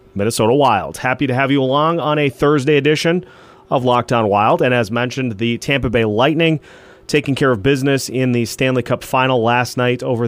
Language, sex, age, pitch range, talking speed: English, male, 30-49, 115-140 Hz, 195 wpm